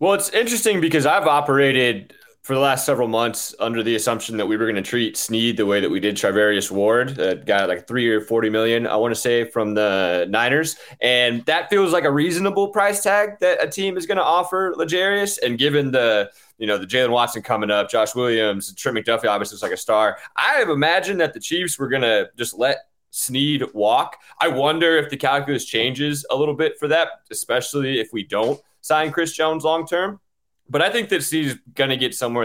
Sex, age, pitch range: male, 20-39, 115-165 Hz